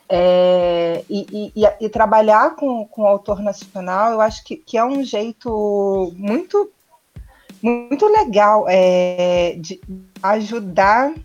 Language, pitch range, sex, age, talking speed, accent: Portuguese, 180-225 Hz, female, 30-49, 100 wpm, Brazilian